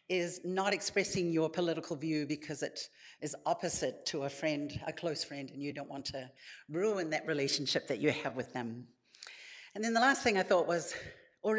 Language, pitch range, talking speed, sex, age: English, 140-180 Hz, 195 wpm, female, 60-79